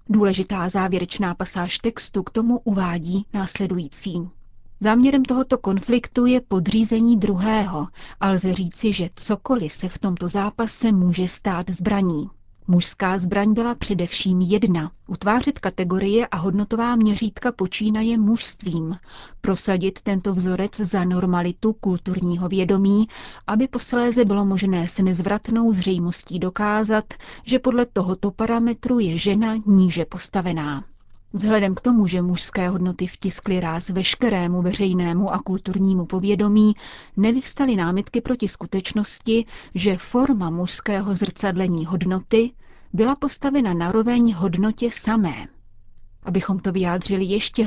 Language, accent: Czech, native